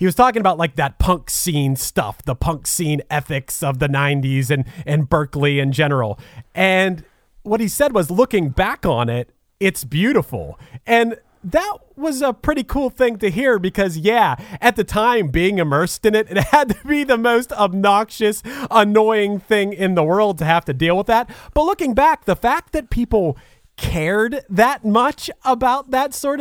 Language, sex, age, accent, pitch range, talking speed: English, male, 30-49, American, 155-230 Hz, 185 wpm